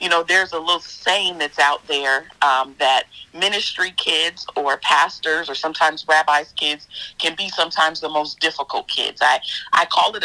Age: 40-59